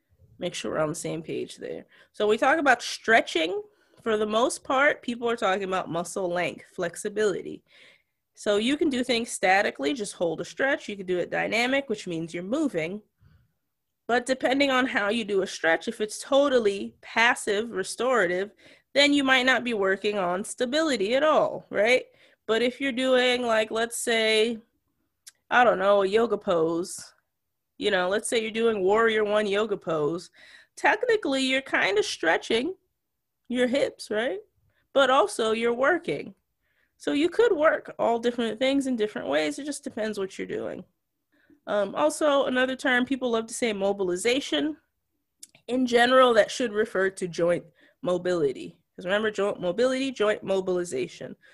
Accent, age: American, 20-39